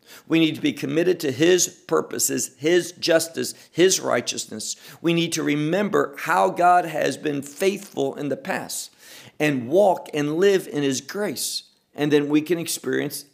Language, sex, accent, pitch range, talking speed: English, male, American, 135-185 Hz, 160 wpm